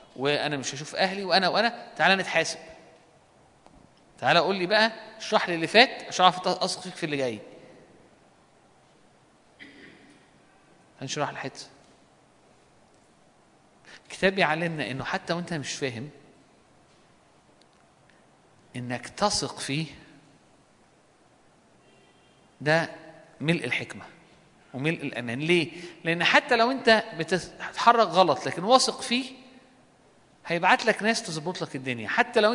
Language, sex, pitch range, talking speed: Arabic, male, 145-190 Hz, 105 wpm